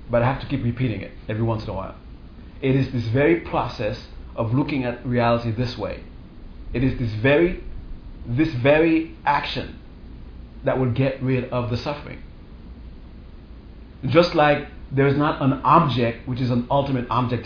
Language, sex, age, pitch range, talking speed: English, male, 30-49, 105-135 Hz, 170 wpm